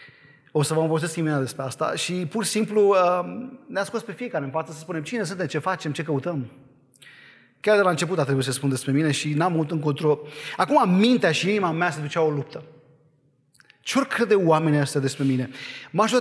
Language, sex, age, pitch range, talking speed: Romanian, male, 30-49, 140-185 Hz, 210 wpm